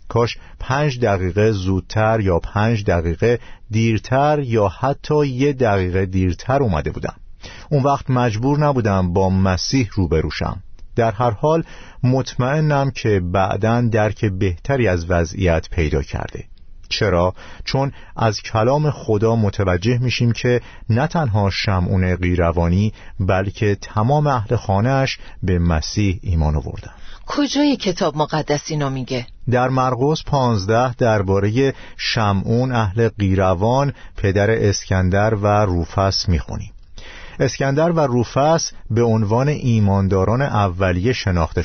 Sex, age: male, 50-69